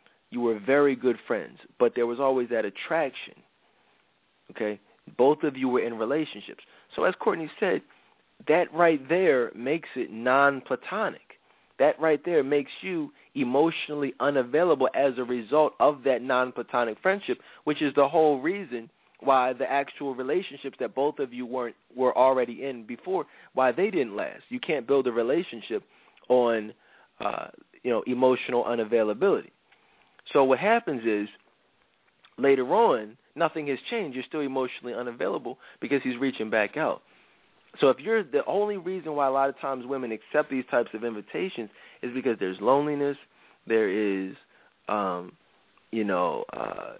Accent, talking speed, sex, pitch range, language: American, 155 wpm, male, 120-140 Hz, English